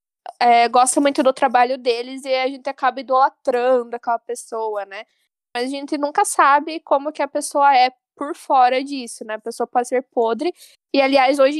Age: 10-29